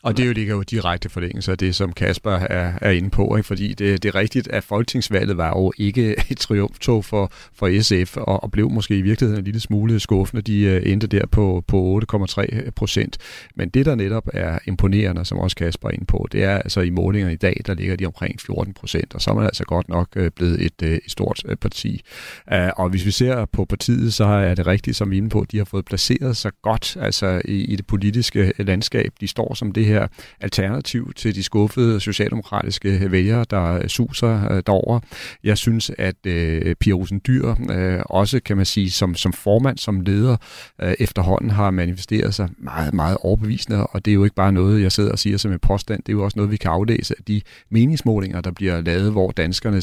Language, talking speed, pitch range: Danish, 220 wpm, 95-110 Hz